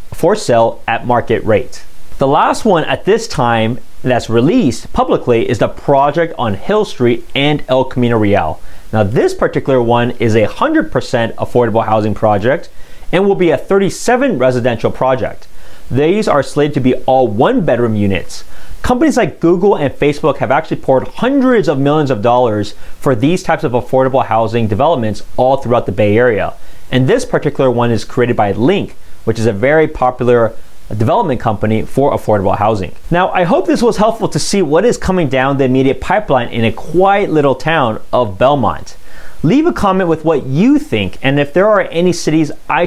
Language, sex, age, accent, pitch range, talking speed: English, male, 30-49, American, 120-165 Hz, 180 wpm